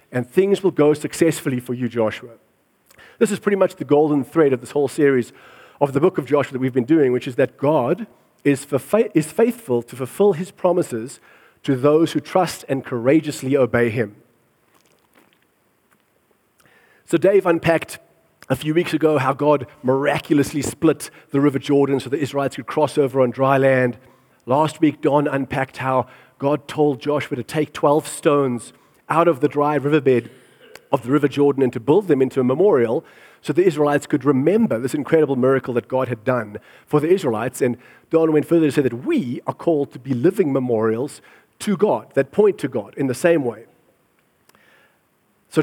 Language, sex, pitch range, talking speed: English, male, 130-160 Hz, 180 wpm